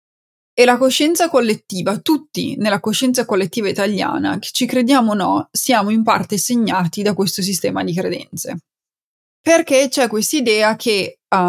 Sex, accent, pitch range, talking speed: female, native, 205-250 Hz, 145 wpm